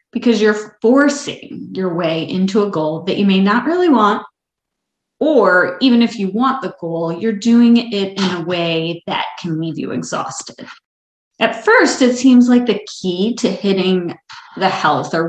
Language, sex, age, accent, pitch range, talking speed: English, female, 30-49, American, 180-240 Hz, 175 wpm